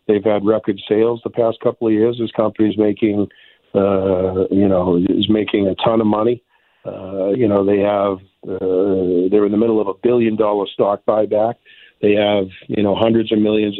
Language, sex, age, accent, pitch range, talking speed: English, male, 50-69, American, 100-110 Hz, 195 wpm